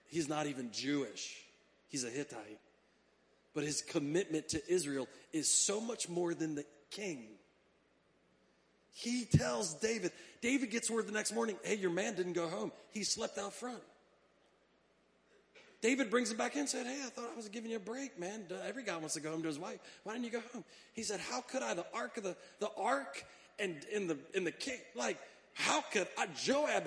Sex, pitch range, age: male, 180-285 Hz, 30-49